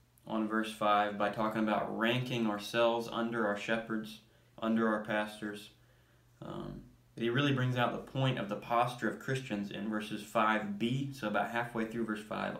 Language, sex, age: English, male, 20-39